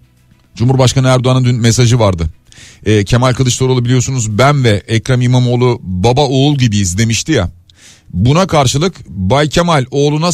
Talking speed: 135 wpm